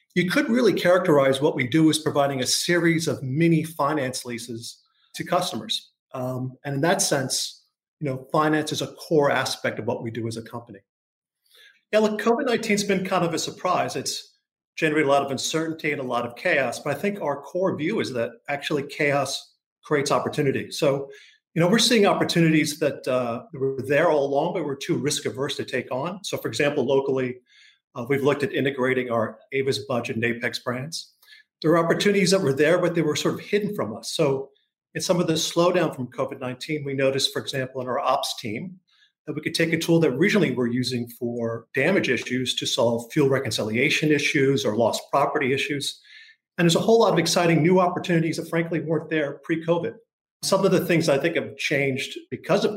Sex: male